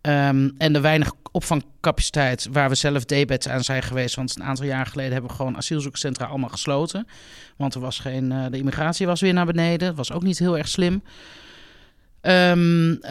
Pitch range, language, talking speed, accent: 135-185 Hz, Dutch, 190 wpm, Dutch